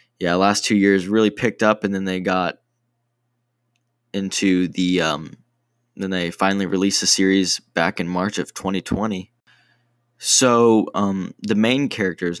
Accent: American